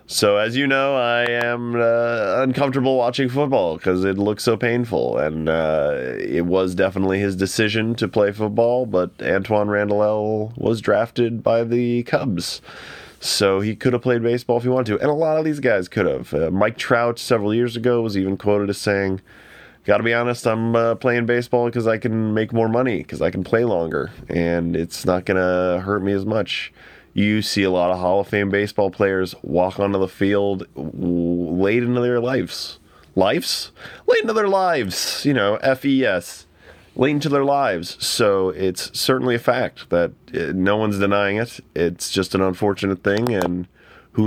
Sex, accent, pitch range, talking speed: male, American, 95-120 Hz, 185 wpm